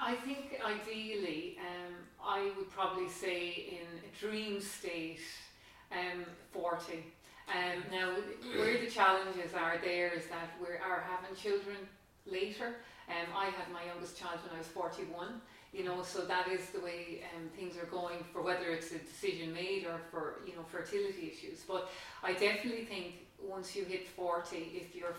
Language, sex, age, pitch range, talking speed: English, female, 30-49, 170-195 Hz, 170 wpm